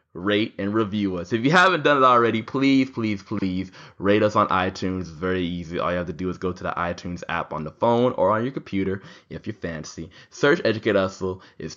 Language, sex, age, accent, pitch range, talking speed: English, male, 20-39, American, 90-105 Hz, 225 wpm